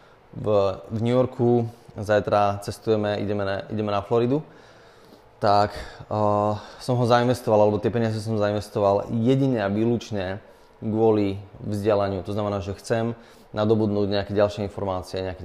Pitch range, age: 100-115 Hz, 20-39